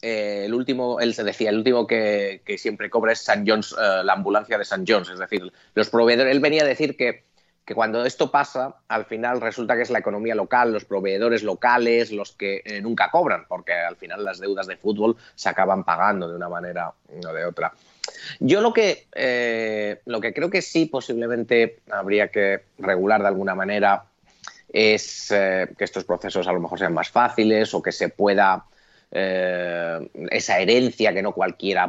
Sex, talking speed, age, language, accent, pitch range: male, 190 wpm, 30-49, Spanish, Spanish, 95-120 Hz